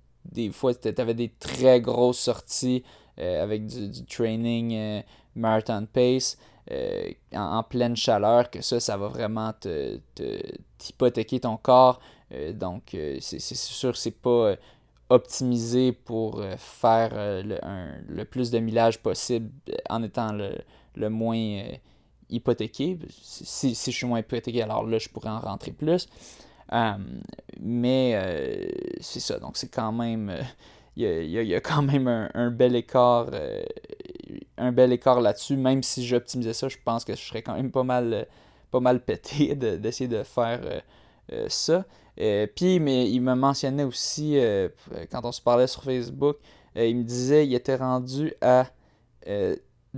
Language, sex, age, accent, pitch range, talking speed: French, male, 20-39, Canadian, 115-130 Hz, 175 wpm